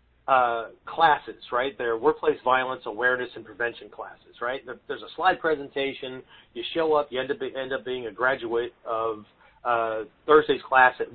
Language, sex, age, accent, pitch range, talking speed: English, male, 40-59, American, 110-145 Hz, 155 wpm